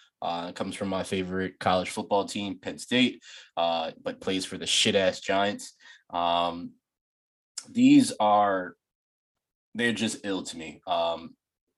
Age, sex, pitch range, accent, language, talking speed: 20-39, male, 95-110 Hz, American, English, 140 wpm